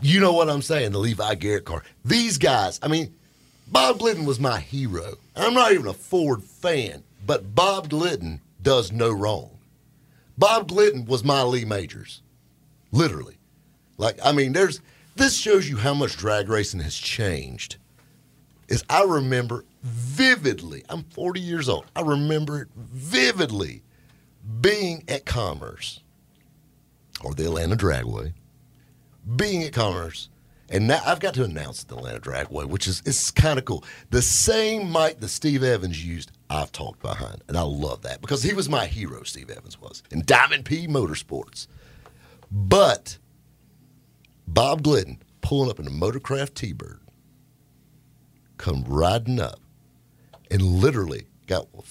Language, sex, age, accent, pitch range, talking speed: English, male, 50-69, American, 100-150 Hz, 150 wpm